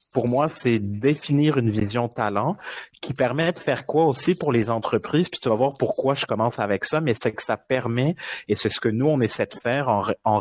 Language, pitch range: French, 110-140 Hz